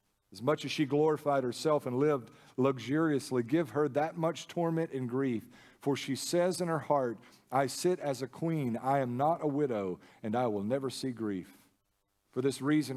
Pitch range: 115-145 Hz